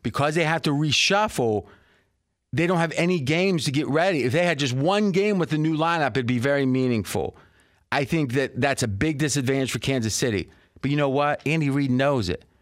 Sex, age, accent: male, 40-59, American